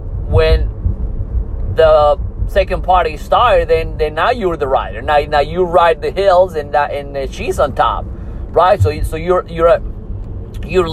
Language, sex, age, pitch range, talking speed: English, male, 30-49, 100-155 Hz, 160 wpm